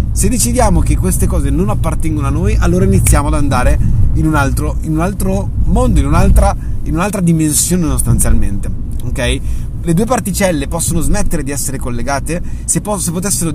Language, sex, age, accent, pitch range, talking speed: Italian, male, 30-49, native, 115-170 Hz, 165 wpm